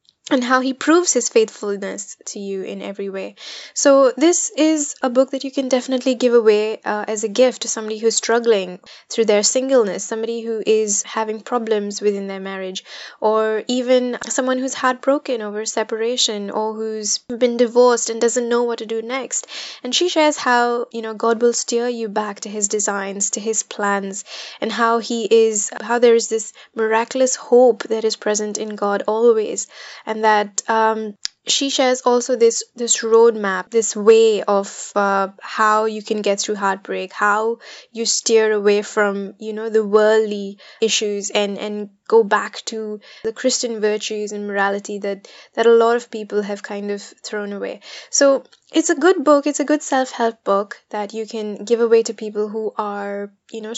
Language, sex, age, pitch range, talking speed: English, female, 10-29, 210-245 Hz, 180 wpm